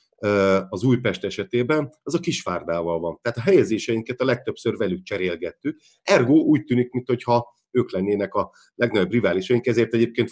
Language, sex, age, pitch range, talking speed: Hungarian, male, 50-69, 100-130 Hz, 145 wpm